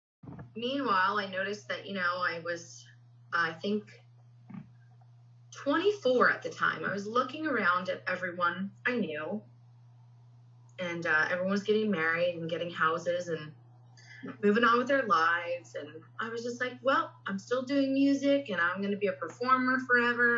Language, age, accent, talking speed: English, 30-49, American, 160 wpm